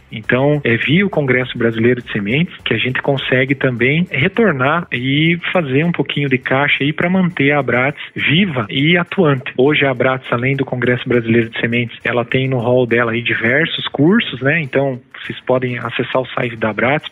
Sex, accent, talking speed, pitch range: male, Brazilian, 190 wpm, 120-145 Hz